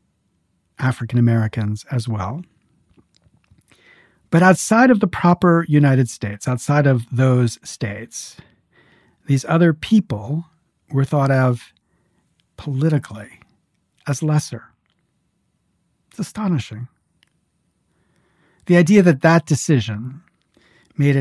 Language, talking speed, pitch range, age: English, 90 wpm, 115-160 Hz, 50-69